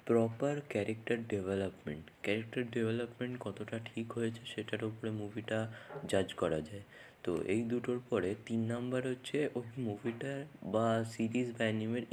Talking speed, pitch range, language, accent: 130 wpm, 105-125 Hz, Bengali, native